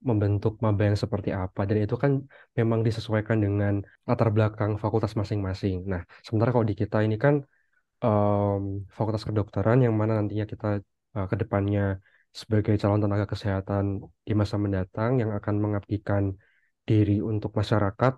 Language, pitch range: Indonesian, 100-115 Hz